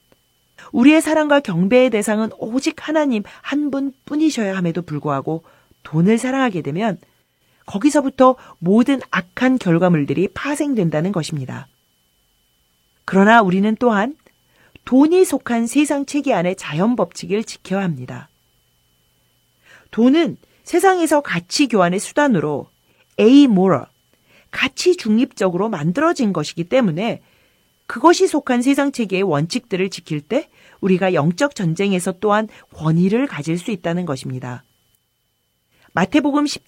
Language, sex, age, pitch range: Korean, female, 40-59, 170-270 Hz